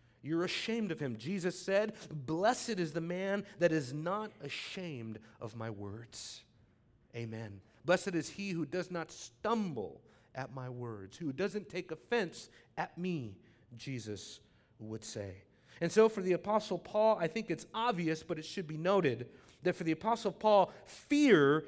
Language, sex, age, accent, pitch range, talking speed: English, male, 30-49, American, 155-220 Hz, 160 wpm